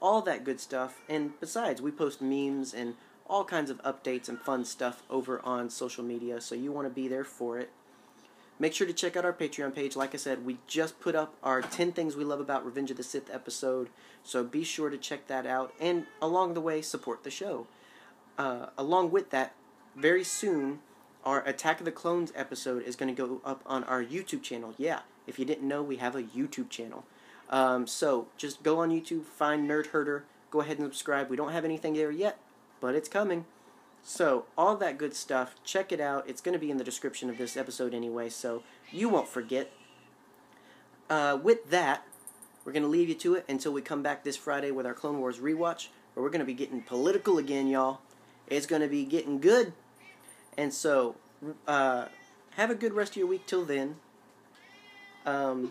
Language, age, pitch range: English, 30-49, 130-160 Hz